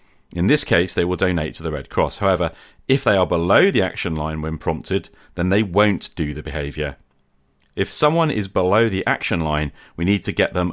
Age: 40-59